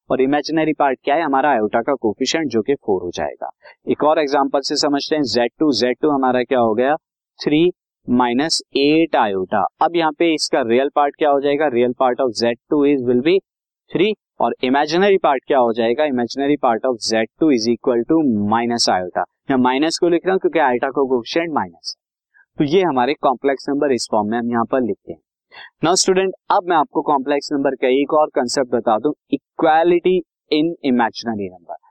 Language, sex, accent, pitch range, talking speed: Hindi, male, native, 125-160 Hz, 135 wpm